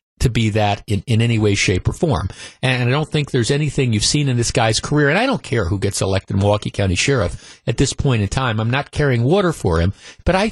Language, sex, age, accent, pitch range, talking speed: English, male, 50-69, American, 110-140 Hz, 255 wpm